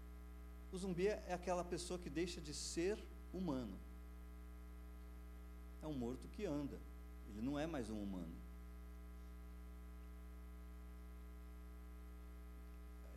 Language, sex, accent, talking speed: Portuguese, male, Brazilian, 100 wpm